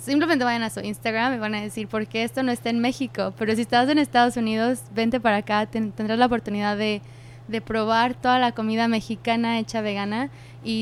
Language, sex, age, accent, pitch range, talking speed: English, female, 20-39, Mexican, 205-230 Hz, 210 wpm